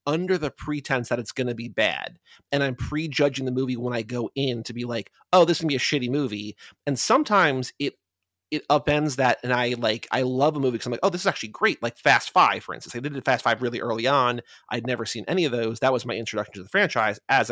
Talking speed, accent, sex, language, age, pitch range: 265 wpm, American, male, English, 30-49, 120-150 Hz